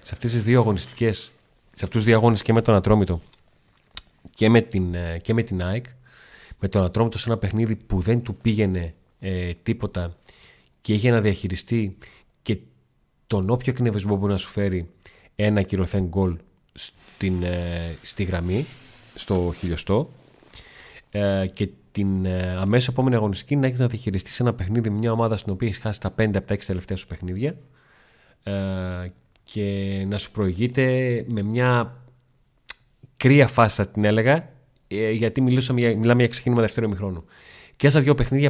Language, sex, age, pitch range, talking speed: Greek, male, 30-49, 95-120 Hz, 160 wpm